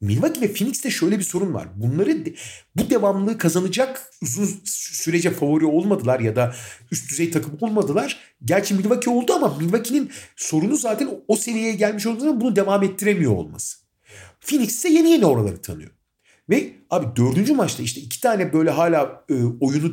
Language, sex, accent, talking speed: Turkish, male, native, 155 wpm